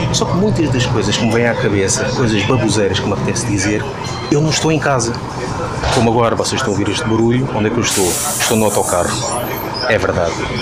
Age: 30-49